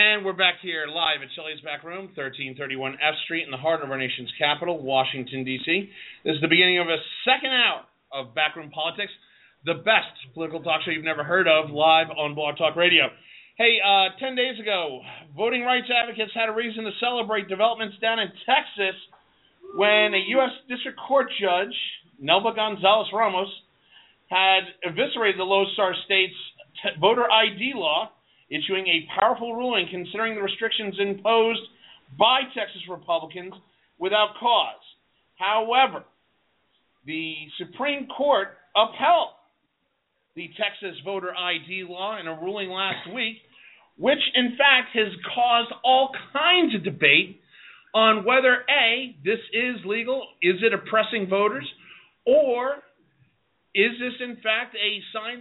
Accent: American